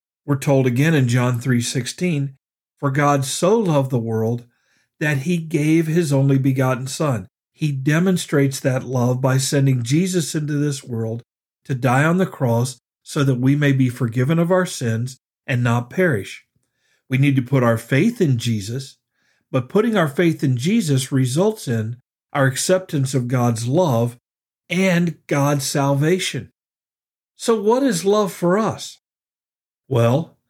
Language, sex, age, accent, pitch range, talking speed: English, male, 50-69, American, 125-165 Hz, 155 wpm